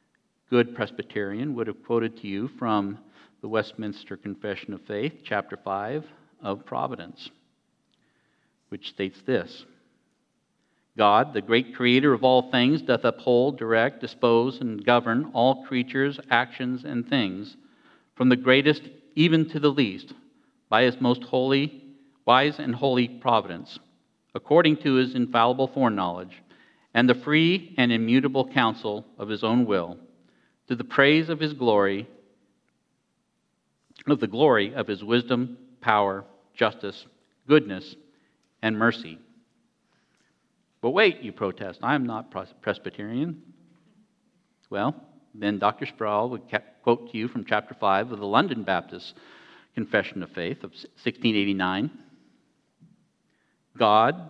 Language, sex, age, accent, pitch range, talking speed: English, male, 50-69, American, 105-140 Hz, 125 wpm